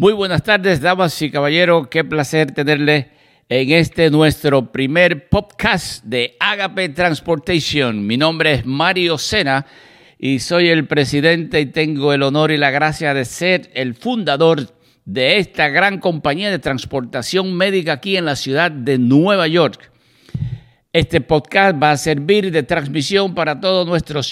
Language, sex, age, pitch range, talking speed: English, male, 60-79, 135-175 Hz, 150 wpm